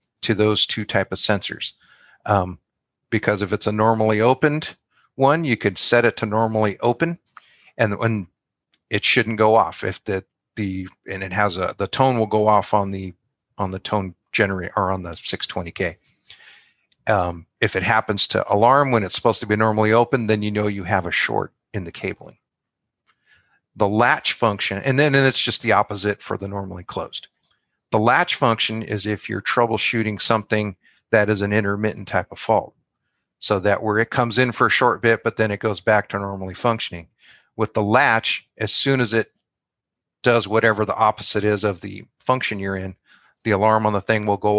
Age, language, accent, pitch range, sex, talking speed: 40-59, English, American, 100-115 Hz, male, 190 wpm